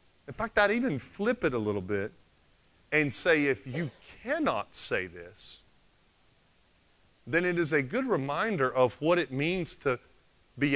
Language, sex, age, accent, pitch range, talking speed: English, male, 40-59, American, 115-180 Hz, 155 wpm